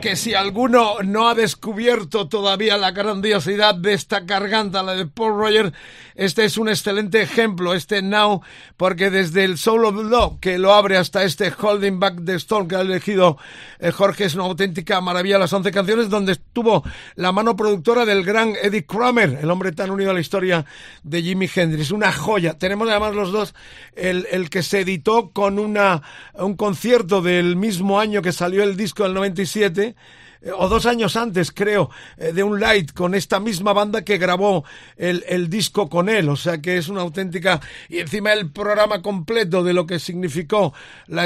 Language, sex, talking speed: Spanish, male, 185 wpm